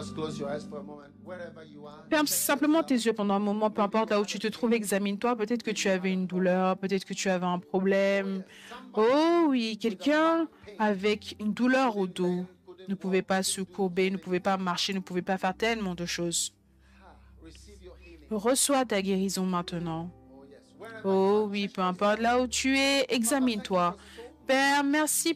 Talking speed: 155 wpm